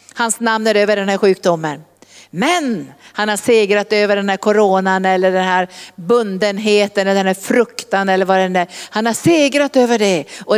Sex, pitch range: female, 175-225 Hz